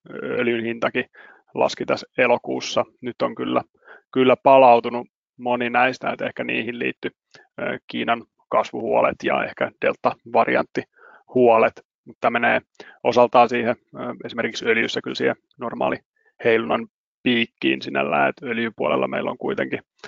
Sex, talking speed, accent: male, 115 wpm, native